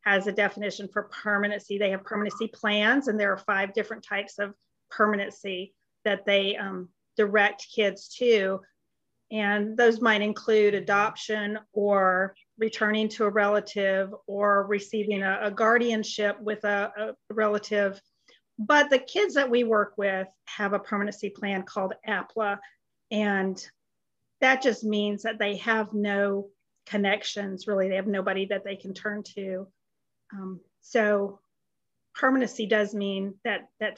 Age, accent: 40-59, American